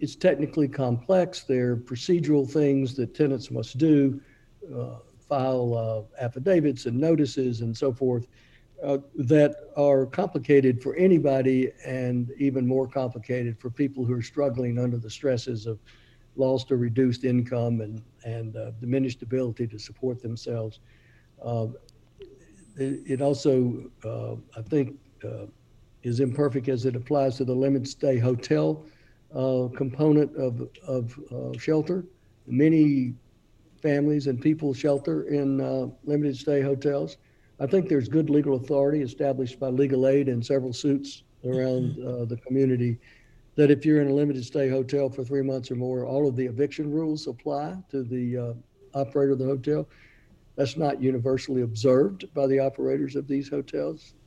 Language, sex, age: English, male, 60-79